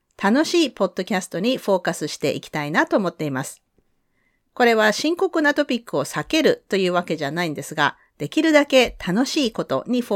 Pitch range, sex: 165-260 Hz, female